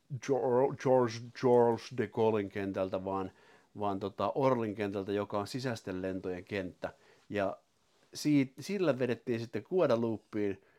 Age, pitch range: 50-69, 95-115 Hz